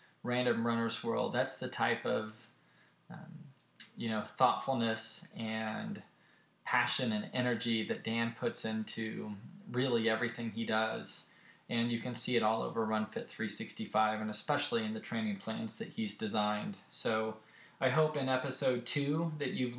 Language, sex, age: English, male, 20-39